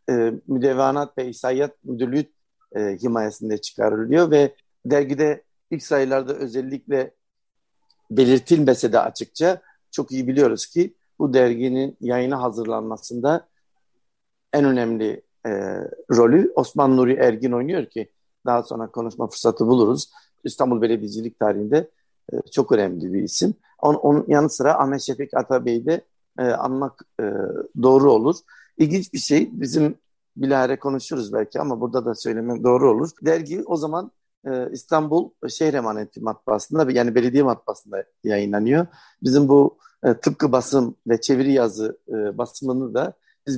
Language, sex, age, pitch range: Turkish, male, 60-79, 125-155 Hz